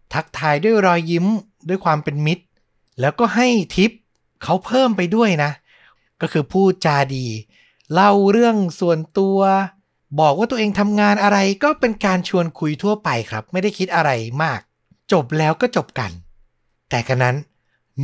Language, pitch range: Thai, 130-180 Hz